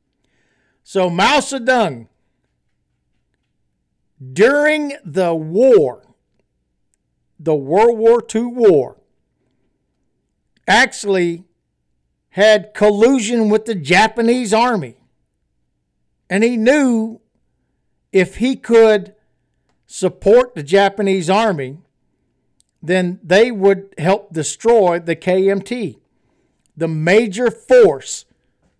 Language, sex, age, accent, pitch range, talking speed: English, male, 60-79, American, 140-210 Hz, 80 wpm